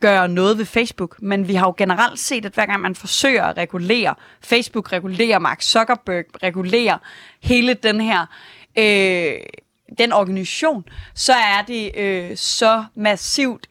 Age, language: 20-39, Danish